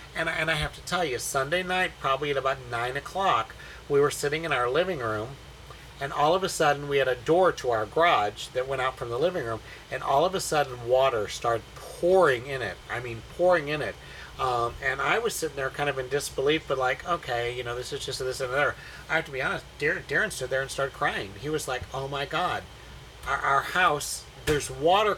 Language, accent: English, American